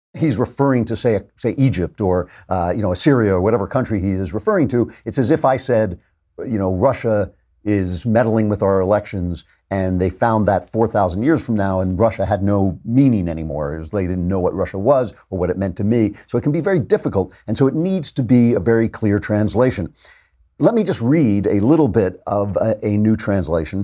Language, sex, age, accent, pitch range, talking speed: English, male, 50-69, American, 95-125 Hz, 215 wpm